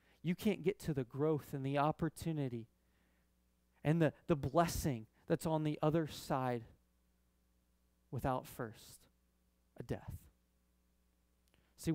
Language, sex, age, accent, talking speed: English, male, 30-49, American, 115 wpm